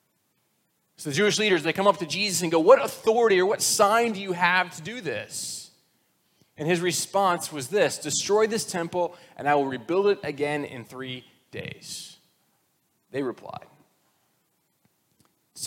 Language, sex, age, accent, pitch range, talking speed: English, male, 30-49, American, 125-175 Hz, 160 wpm